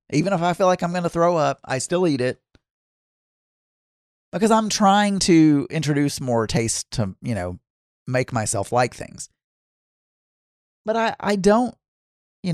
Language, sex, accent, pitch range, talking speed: English, male, American, 125-195 Hz, 160 wpm